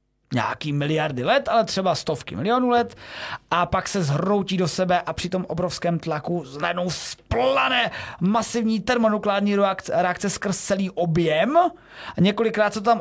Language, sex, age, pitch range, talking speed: Czech, male, 30-49, 165-220 Hz, 150 wpm